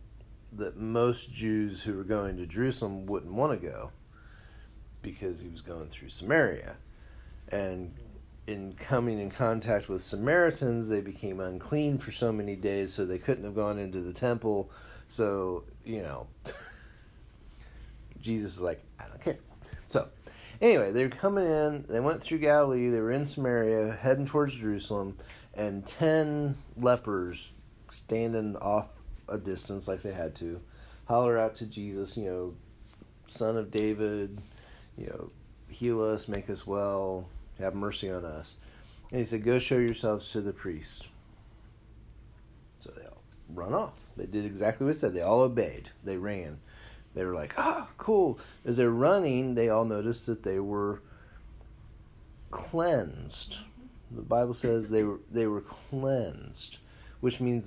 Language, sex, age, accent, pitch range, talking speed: English, male, 30-49, American, 100-120 Hz, 150 wpm